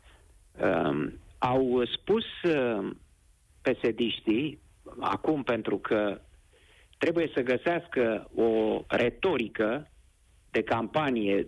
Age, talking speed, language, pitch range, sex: 50-69, 85 wpm, Romanian, 105-165 Hz, male